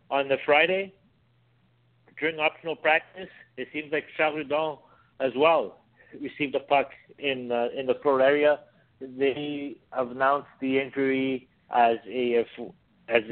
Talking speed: 130 wpm